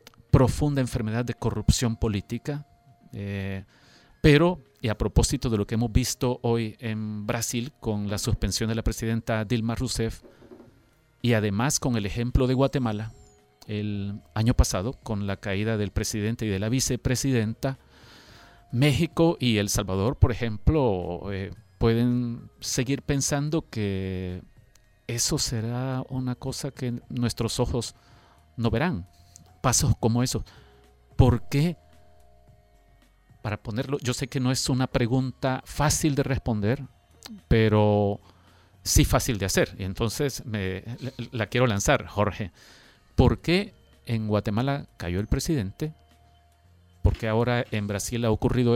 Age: 40-59